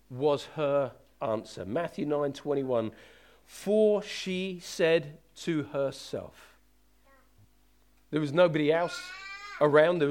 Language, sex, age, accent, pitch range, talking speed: English, male, 40-59, British, 140-205 Hz, 95 wpm